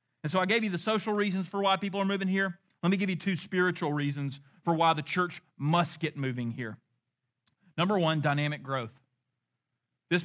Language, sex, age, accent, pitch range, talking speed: English, male, 40-59, American, 130-175 Hz, 200 wpm